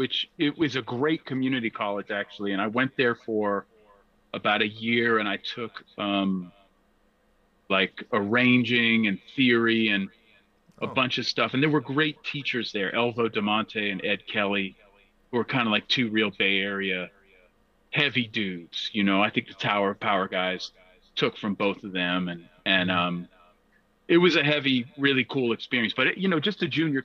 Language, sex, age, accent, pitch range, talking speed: English, male, 40-59, American, 105-150 Hz, 180 wpm